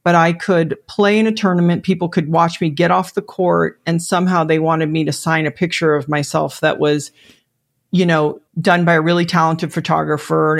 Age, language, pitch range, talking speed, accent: 40-59, English, 155-185 Hz, 210 wpm, American